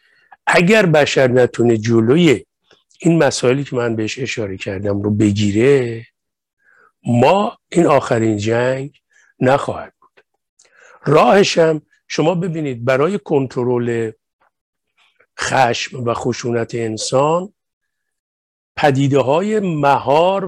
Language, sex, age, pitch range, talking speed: Persian, male, 50-69, 120-170 Hz, 90 wpm